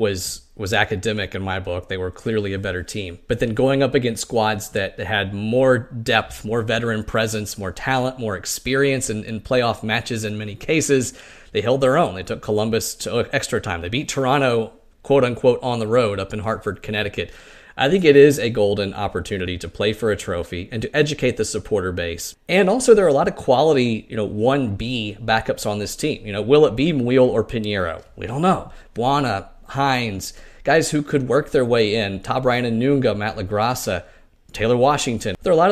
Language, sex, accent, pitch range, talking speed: English, male, American, 100-125 Hz, 210 wpm